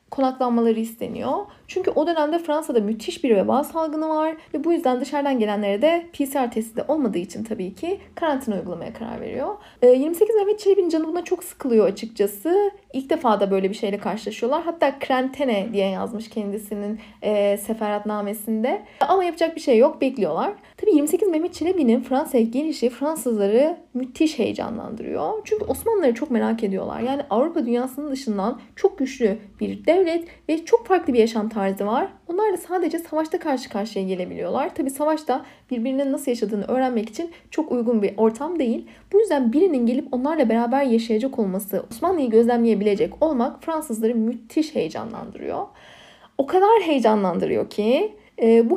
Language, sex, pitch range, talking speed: Turkish, female, 225-310 Hz, 155 wpm